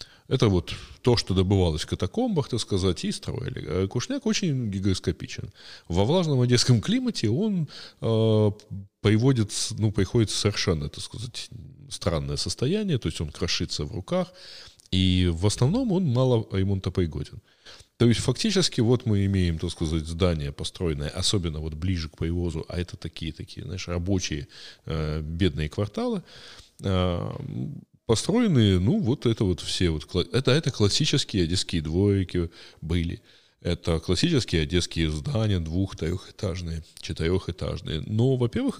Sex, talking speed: male, 135 wpm